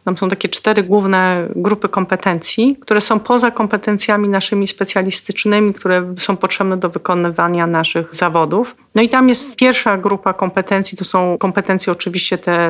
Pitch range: 180-205 Hz